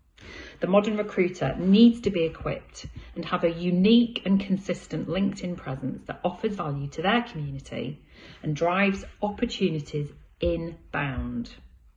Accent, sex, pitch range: British, female, 150-205 Hz